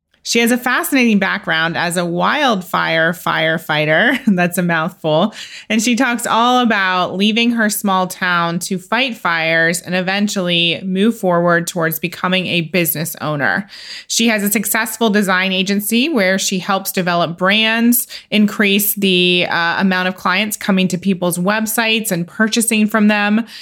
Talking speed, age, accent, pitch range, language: 145 wpm, 30-49, American, 175-210 Hz, English